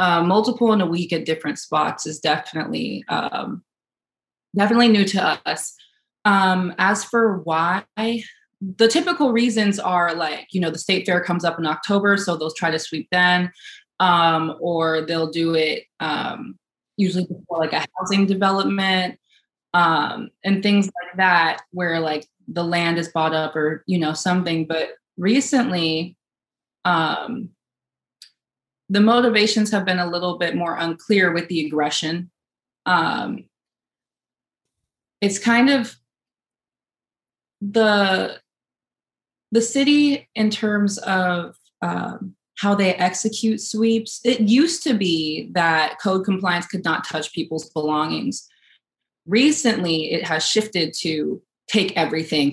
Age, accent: 20-39, American